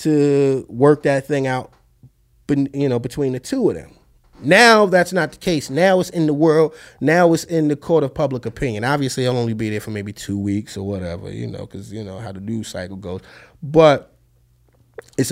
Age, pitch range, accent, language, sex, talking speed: 20-39, 120-190 Hz, American, English, male, 210 wpm